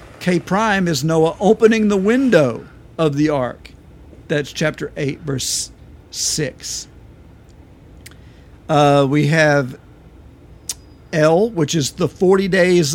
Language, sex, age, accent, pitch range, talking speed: English, male, 50-69, American, 130-170 Hz, 110 wpm